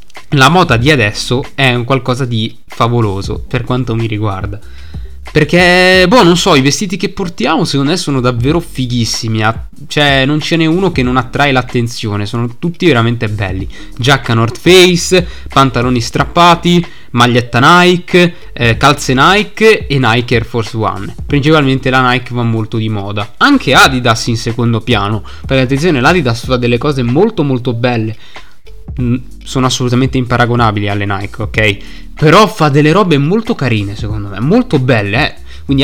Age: 20-39